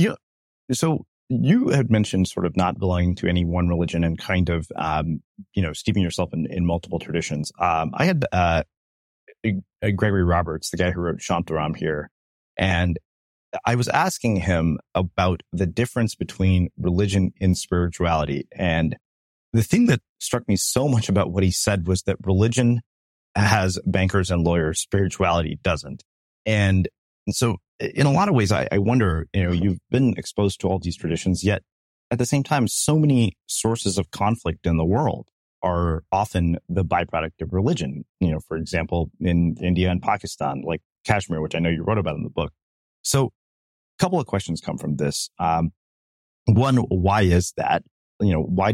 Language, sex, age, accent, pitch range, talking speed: English, male, 30-49, American, 80-100 Hz, 180 wpm